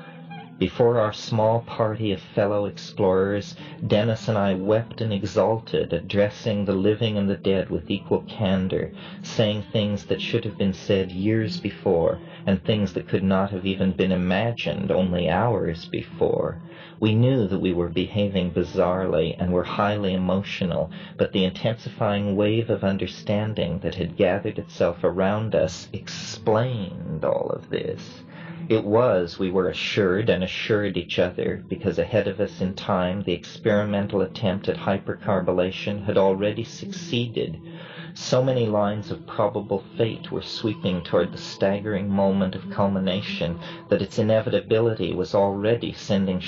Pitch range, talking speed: 95-115 Hz, 145 wpm